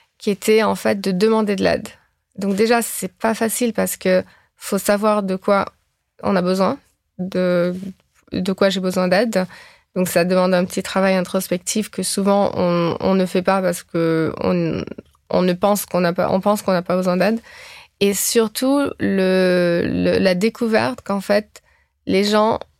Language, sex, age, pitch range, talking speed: French, female, 20-39, 180-210 Hz, 180 wpm